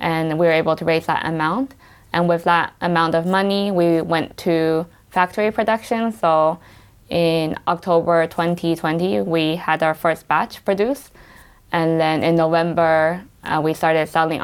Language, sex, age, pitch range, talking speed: English, female, 20-39, 155-175 Hz, 155 wpm